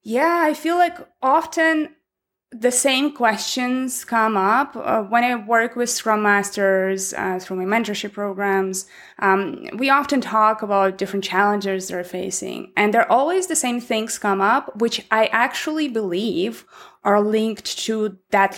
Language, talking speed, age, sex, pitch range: English, 150 wpm, 20-39, female, 195-245 Hz